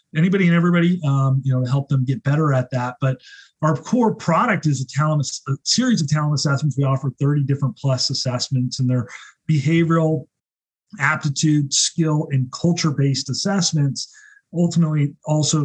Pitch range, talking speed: 130-155 Hz, 155 wpm